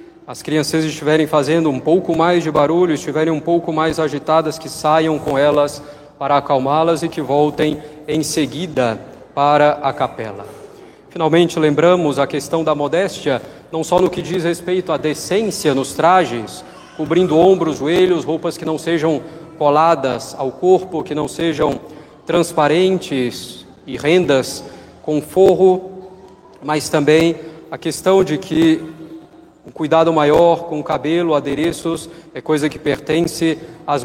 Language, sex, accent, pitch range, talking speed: Portuguese, male, Brazilian, 145-175 Hz, 140 wpm